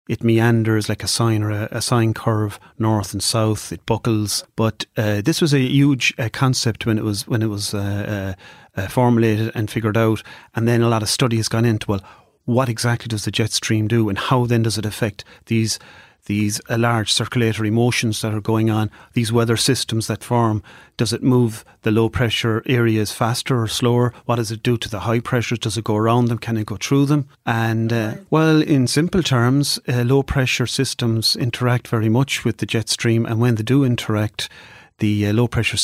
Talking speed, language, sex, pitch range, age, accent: 215 wpm, English, male, 110-120 Hz, 30-49, Irish